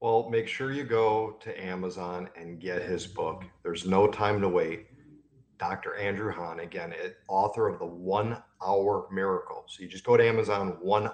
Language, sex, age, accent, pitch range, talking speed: English, male, 40-59, American, 110-160 Hz, 180 wpm